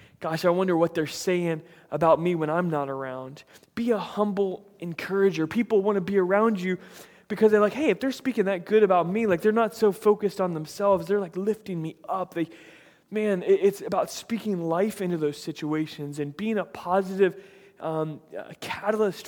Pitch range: 155-205 Hz